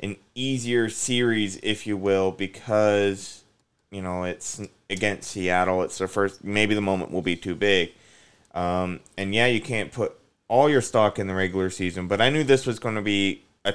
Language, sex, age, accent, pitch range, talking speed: English, male, 20-39, American, 95-115 Hz, 190 wpm